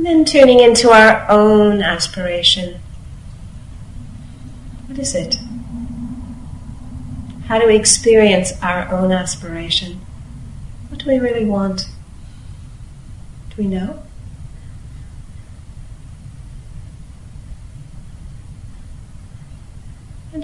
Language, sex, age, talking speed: English, female, 40-59, 75 wpm